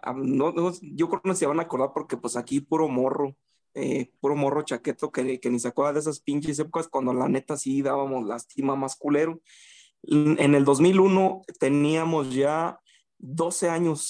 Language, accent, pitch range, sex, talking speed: Spanish, Mexican, 140-185 Hz, male, 180 wpm